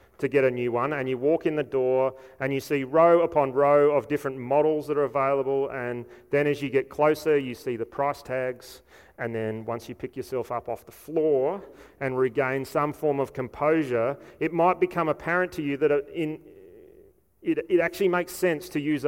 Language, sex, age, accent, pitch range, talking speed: English, male, 30-49, Australian, 130-155 Hz, 205 wpm